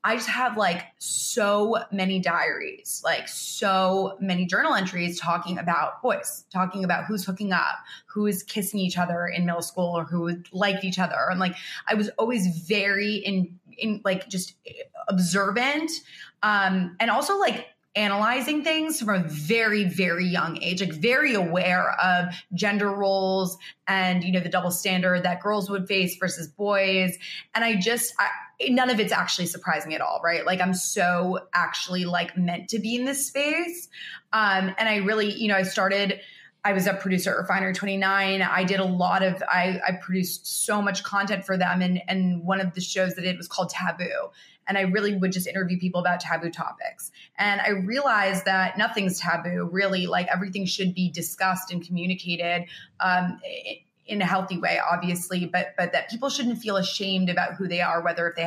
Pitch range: 180-205 Hz